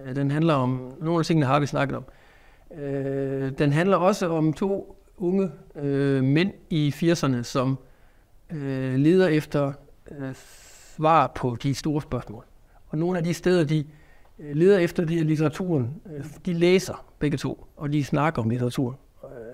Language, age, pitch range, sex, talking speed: Danish, 60-79, 135-165 Hz, male, 140 wpm